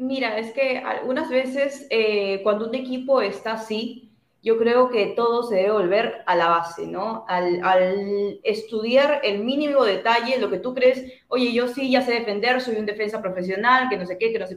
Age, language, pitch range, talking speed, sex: 20-39, Spanish, 200-270 Hz, 200 wpm, female